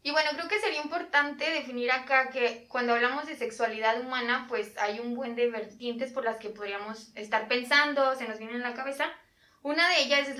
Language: Spanish